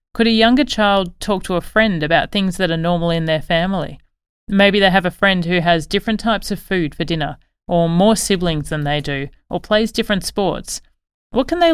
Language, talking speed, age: English, 215 wpm, 30-49